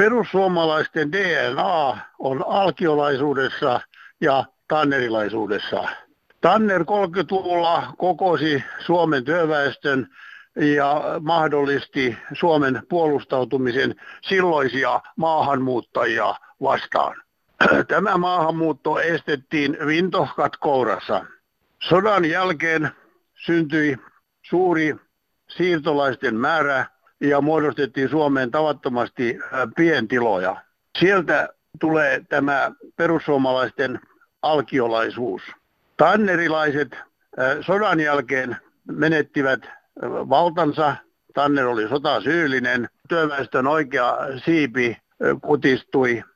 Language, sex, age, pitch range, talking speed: Finnish, male, 60-79, 140-170 Hz, 65 wpm